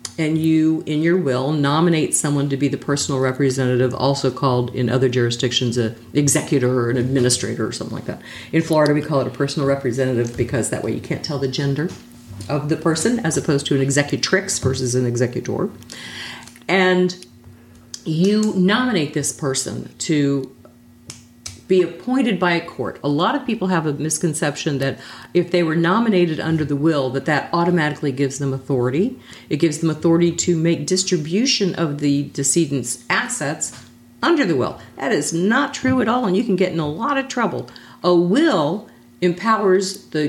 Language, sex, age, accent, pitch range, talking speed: English, female, 50-69, American, 135-175 Hz, 175 wpm